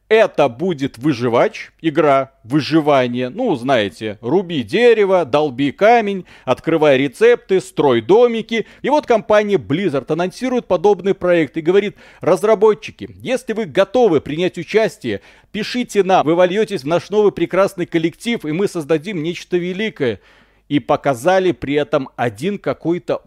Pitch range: 135-185 Hz